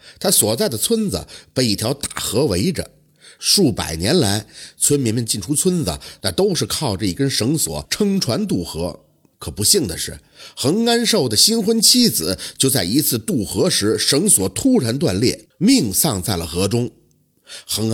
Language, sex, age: Chinese, male, 50-69